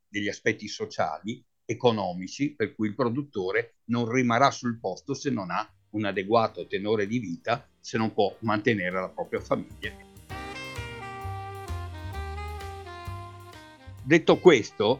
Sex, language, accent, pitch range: male, Italian, native, 100-130 Hz